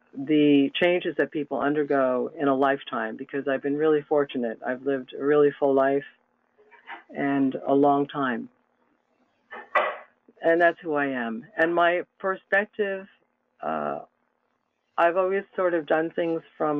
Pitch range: 135-155 Hz